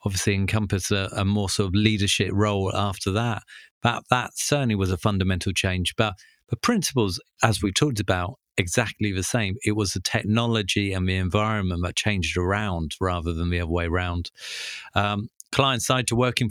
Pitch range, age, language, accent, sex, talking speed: 95-115 Hz, 40-59, English, British, male, 180 wpm